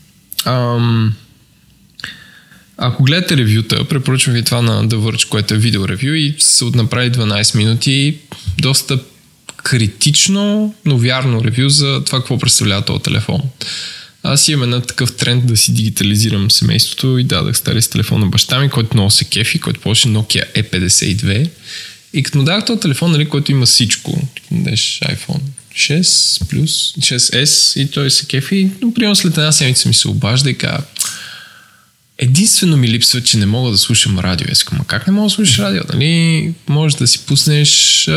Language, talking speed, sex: Bulgarian, 160 wpm, male